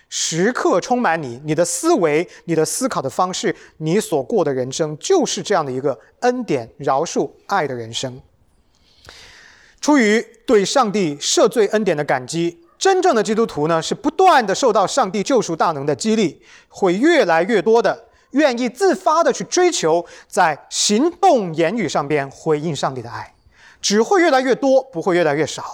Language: English